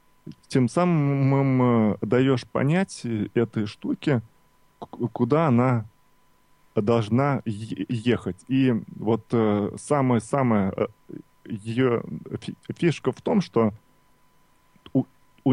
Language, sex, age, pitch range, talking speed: Russian, male, 20-39, 115-140 Hz, 85 wpm